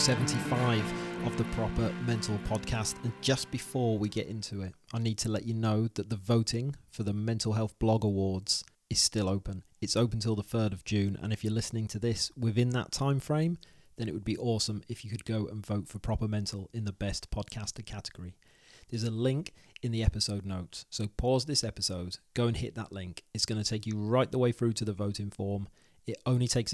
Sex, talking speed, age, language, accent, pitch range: male, 220 wpm, 30-49, English, British, 100-120 Hz